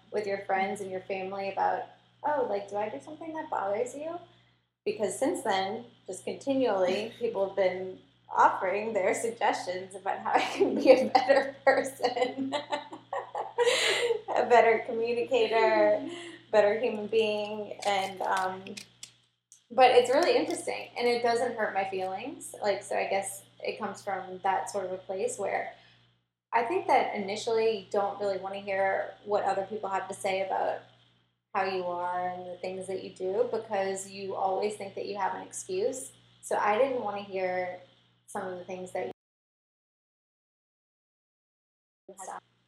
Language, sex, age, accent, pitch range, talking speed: English, female, 10-29, American, 185-240 Hz, 160 wpm